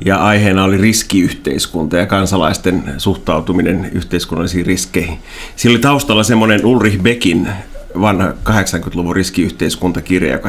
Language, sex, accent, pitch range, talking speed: Finnish, male, native, 90-110 Hz, 110 wpm